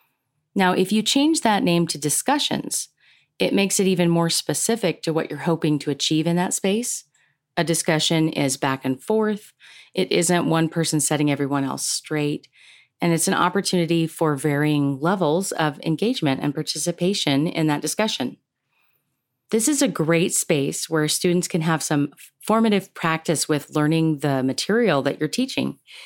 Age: 30-49